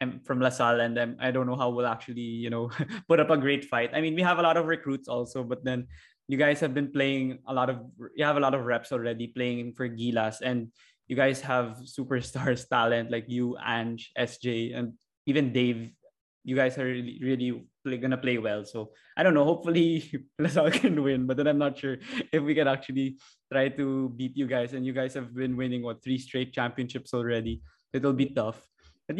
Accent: native